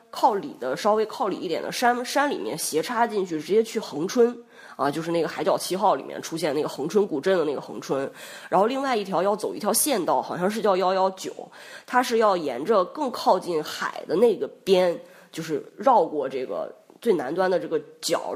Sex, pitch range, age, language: female, 185-255 Hz, 20-39, Chinese